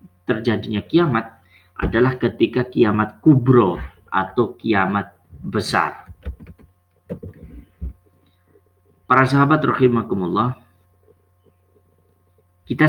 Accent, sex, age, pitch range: native, male, 30-49, 90-115 Hz